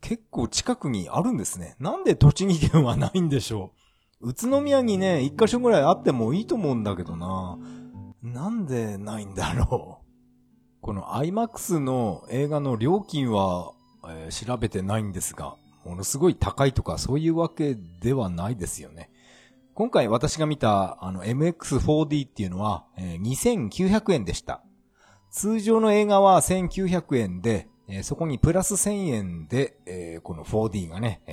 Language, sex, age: Japanese, male, 40-59